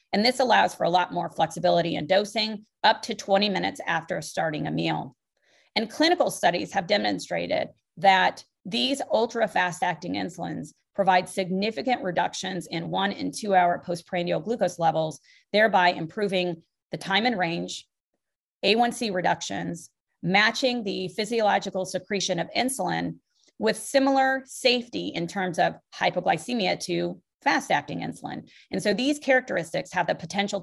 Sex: female